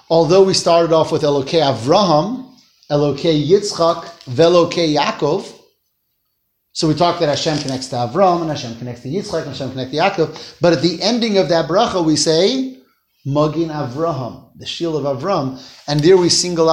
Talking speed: 170 wpm